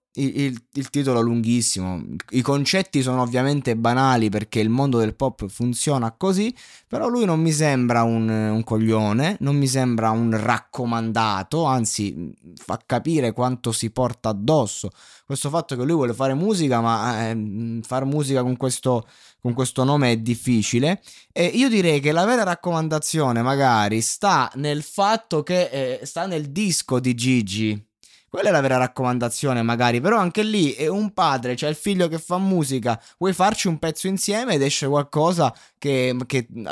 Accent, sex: native, male